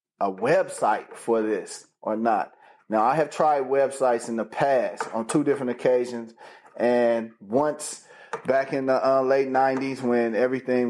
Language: English